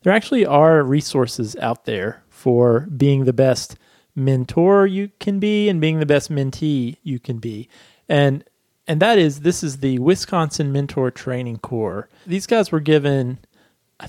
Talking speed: 160 wpm